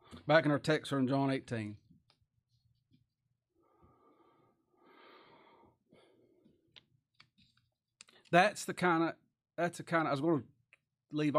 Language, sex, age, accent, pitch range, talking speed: English, male, 40-59, American, 120-155 Hz, 110 wpm